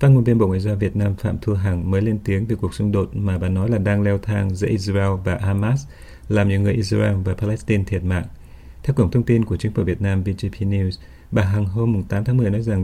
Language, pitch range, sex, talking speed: Vietnamese, 90-110 Hz, male, 260 wpm